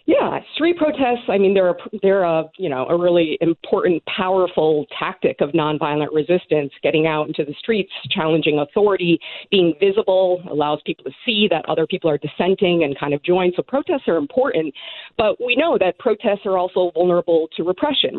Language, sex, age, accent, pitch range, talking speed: English, female, 50-69, American, 165-210 Hz, 180 wpm